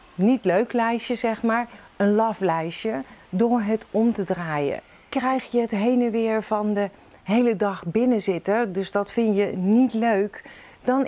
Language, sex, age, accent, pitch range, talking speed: Dutch, female, 40-59, Dutch, 195-235 Hz, 175 wpm